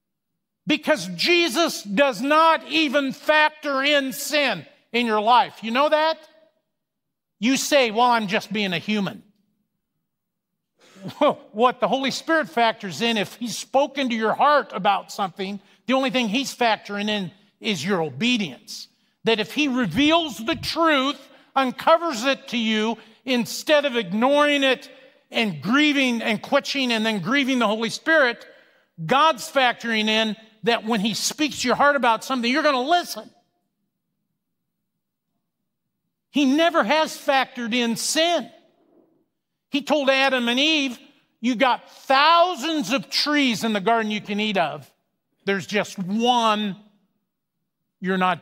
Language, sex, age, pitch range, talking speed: English, male, 50-69, 210-280 Hz, 140 wpm